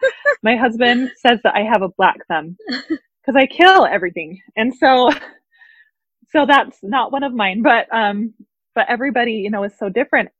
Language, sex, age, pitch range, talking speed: English, female, 20-39, 190-250 Hz, 175 wpm